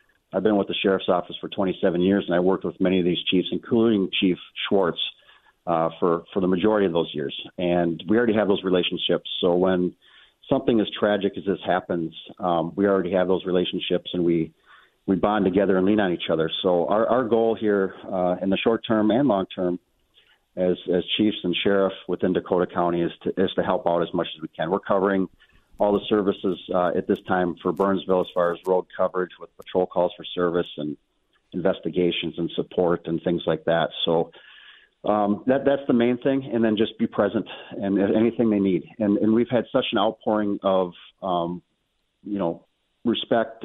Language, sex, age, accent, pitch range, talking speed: English, male, 40-59, American, 90-105 Hz, 200 wpm